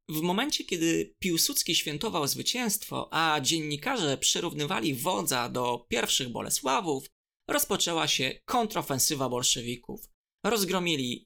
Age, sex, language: 20-39, male, Polish